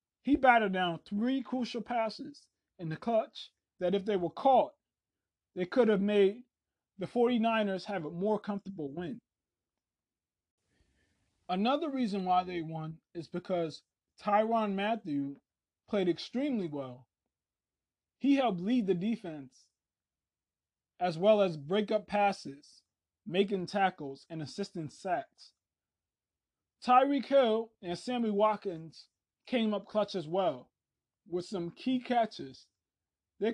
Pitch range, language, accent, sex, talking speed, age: 150-230 Hz, English, American, male, 120 wpm, 20-39